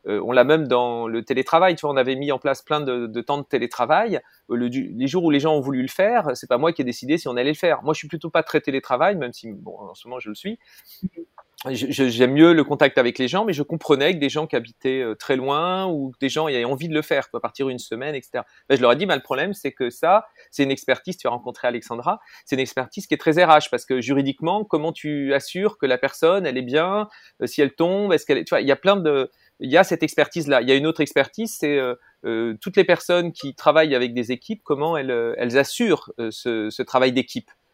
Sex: male